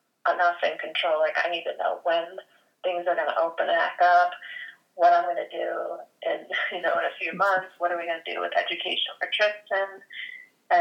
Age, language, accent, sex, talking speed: 30-49, English, American, female, 215 wpm